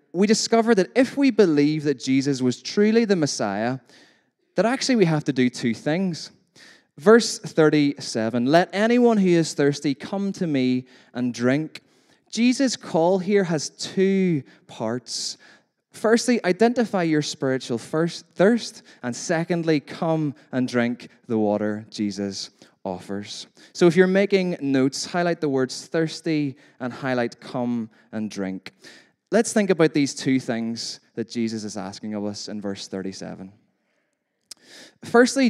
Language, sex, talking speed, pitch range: English, male, 140 wpm, 120-180 Hz